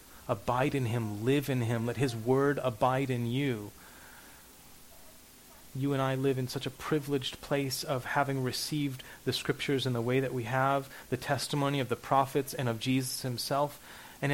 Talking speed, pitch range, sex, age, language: 175 wpm, 120-135 Hz, male, 30-49, English